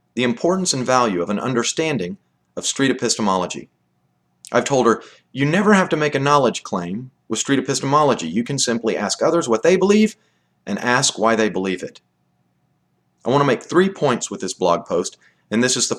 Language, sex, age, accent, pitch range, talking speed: English, male, 40-59, American, 95-145 Hz, 195 wpm